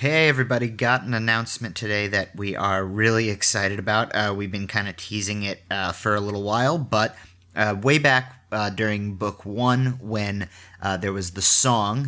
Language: English